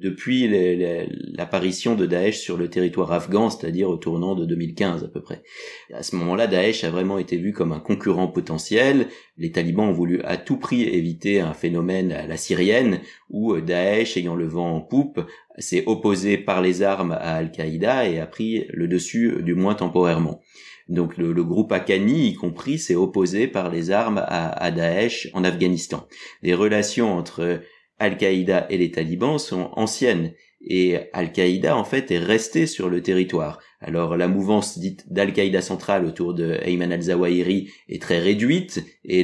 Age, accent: 30-49, French